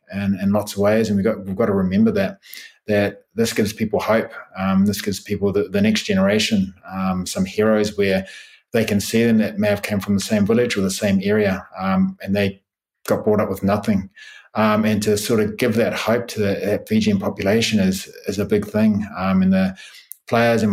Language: English